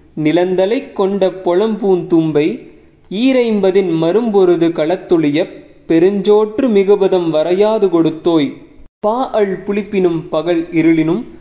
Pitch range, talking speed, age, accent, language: 165-220 Hz, 80 wpm, 20-39, native, Tamil